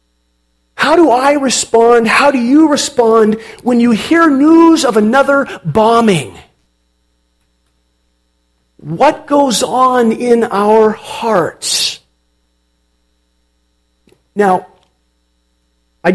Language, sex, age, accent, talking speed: English, male, 50-69, American, 85 wpm